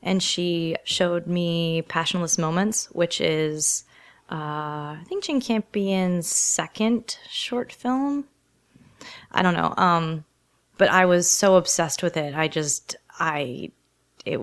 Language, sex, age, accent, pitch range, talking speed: English, female, 20-39, American, 160-185 Hz, 130 wpm